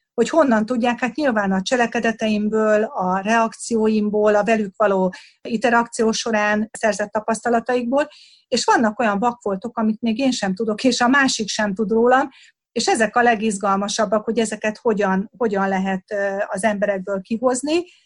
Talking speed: 145 wpm